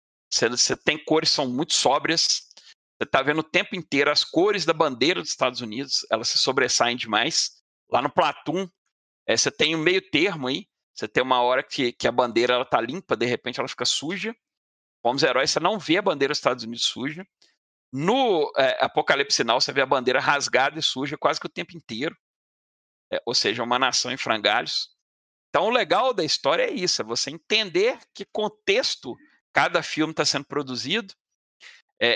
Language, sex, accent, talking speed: Portuguese, male, Brazilian, 190 wpm